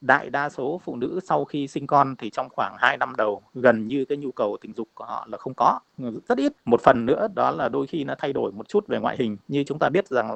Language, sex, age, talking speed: Vietnamese, male, 20-39, 285 wpm